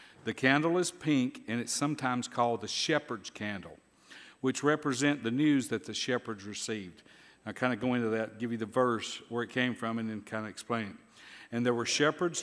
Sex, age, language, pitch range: male, 50-69, English, 110-135 Hz